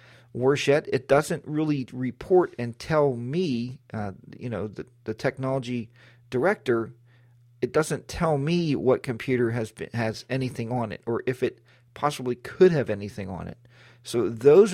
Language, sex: English, male